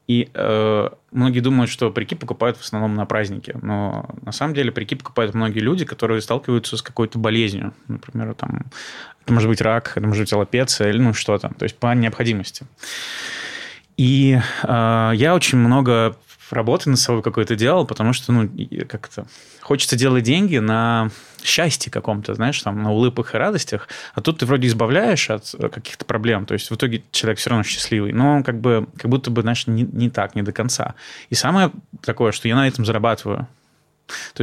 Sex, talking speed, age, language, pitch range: male, 185 wpm, 20-39, Russian, 110-130 Hz